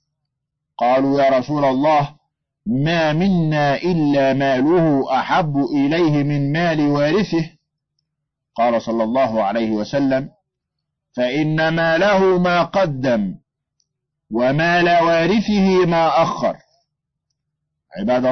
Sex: male